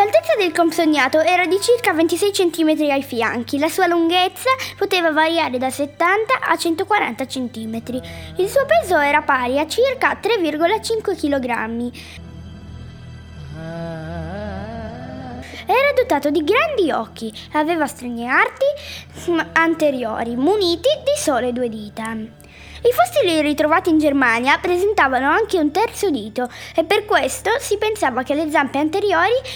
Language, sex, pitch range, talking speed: Italian, female, 250-370 Hz, 125 wpm